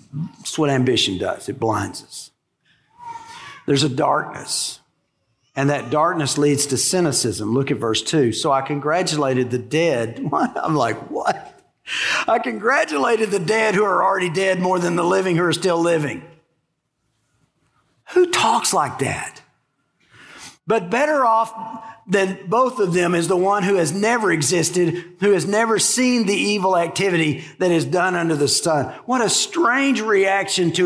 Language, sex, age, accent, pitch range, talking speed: English, male, 50-69, American, 160-230 Hz, 155 wpm